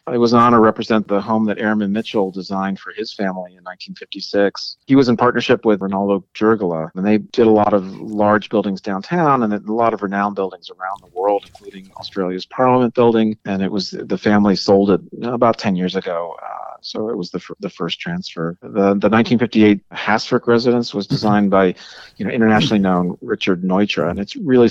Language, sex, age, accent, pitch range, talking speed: English, male, 40-59, American, 95-115 Hz, 200 wpm